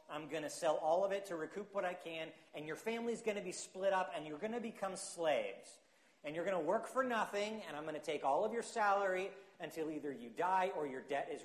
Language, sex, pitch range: English, male, 150-205 Hz